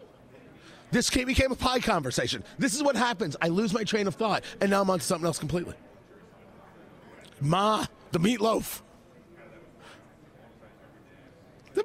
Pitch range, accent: 140-210 Hz, American